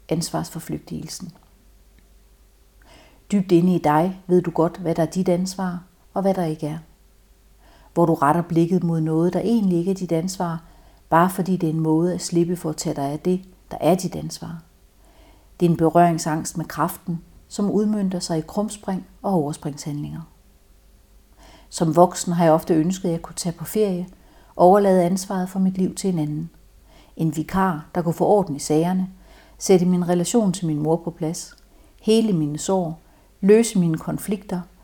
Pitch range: 165-190 Hz